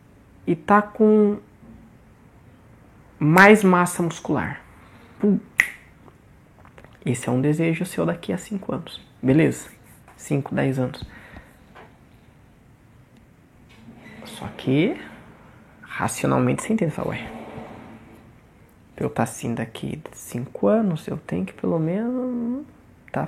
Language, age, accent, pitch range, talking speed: Portuguese, 20-39, Brazilian, 120-170 Hz, 105 wpm